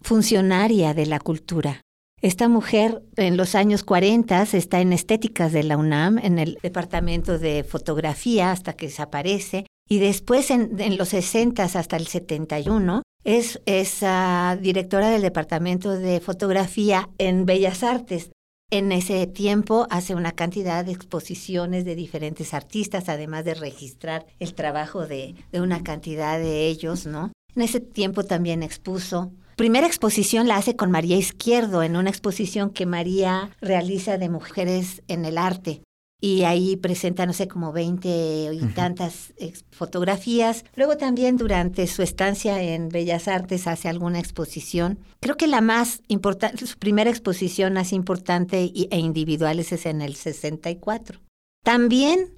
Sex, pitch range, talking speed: female, 170-205 Hz, 150 wpm